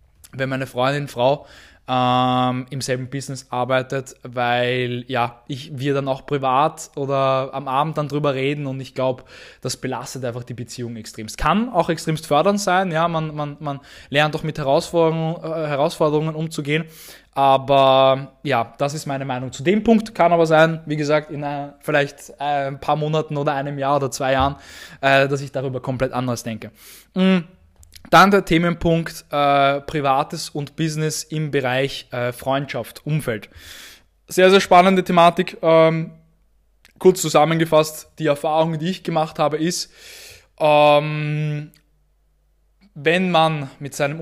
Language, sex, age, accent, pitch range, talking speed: German, male, 20-39, German, 130-160 Hz, 150 wpm